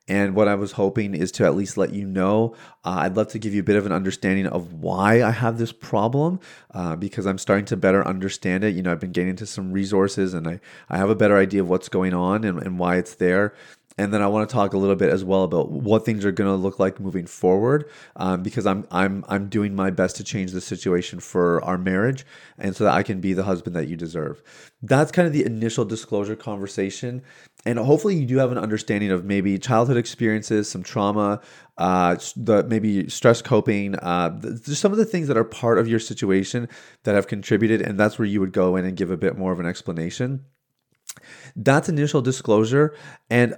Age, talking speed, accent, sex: 30-49, 230 wpm, American, male